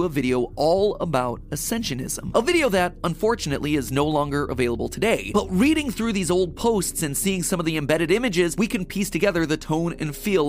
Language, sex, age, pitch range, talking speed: English, male, 30-49, 150-200 Hz, 200 wpm